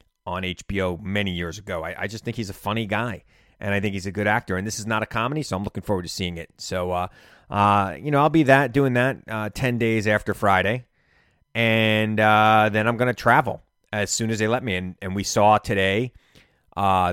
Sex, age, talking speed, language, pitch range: male, 30-49, 235 wpm, English, 95-125 Hz